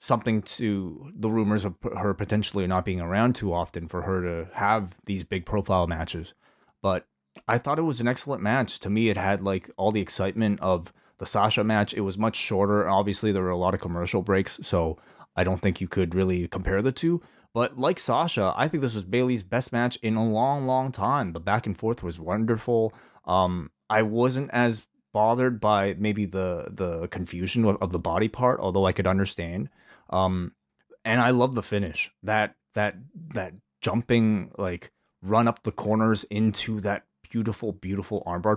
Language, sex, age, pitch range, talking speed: English, male, 30-49, 95-115 Hz, 190 wpm